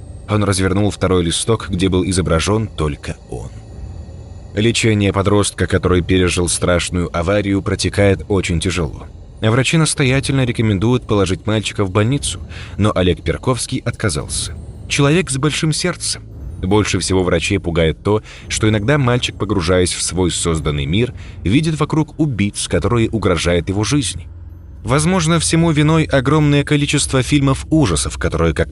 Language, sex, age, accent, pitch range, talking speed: Russian, male, 20-39, native, 90-115 Hz, 130 wpm